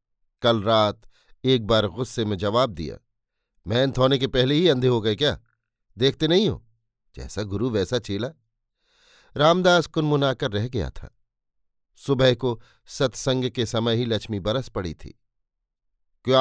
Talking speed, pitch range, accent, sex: 145 wpm, 110-145 Hz, native, male